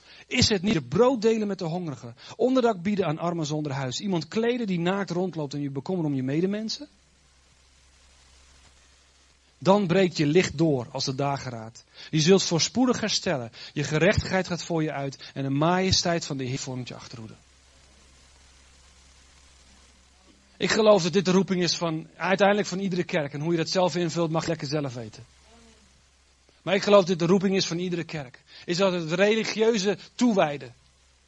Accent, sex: Dutch, male